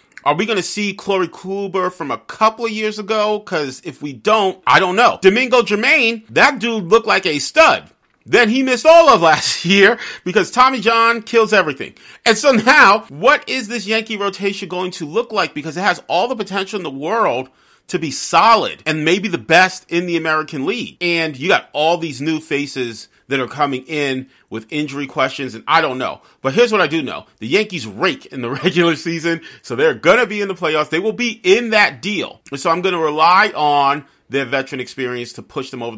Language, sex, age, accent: English, male, 40-59, American